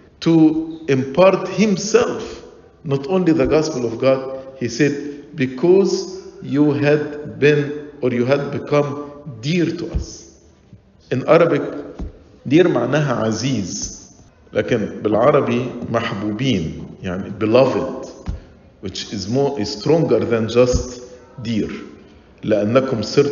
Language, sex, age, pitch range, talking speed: English, male, 50-69, 125-165 Hz, 105 wpm